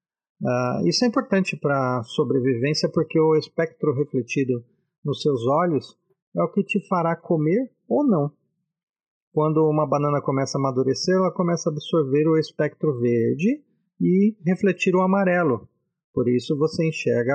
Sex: male